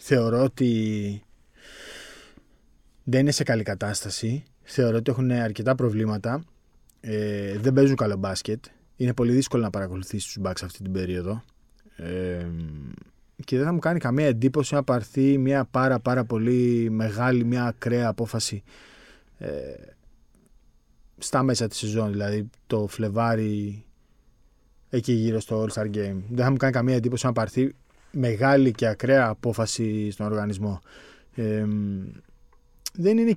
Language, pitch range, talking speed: Greek, 105-135 Hz, 135 wpm